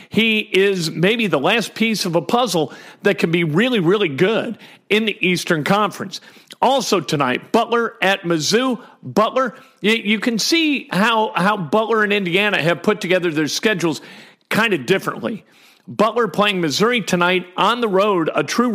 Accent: American